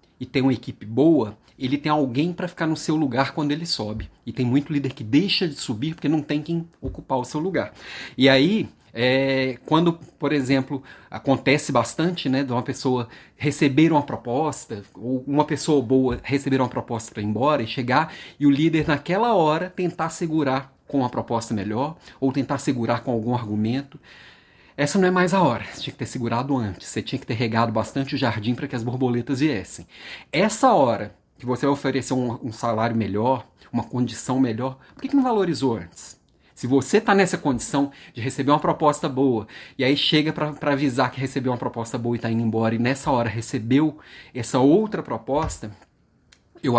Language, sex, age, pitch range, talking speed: Portuguese, male, 30-49, 120-150 Hz, 195 wpm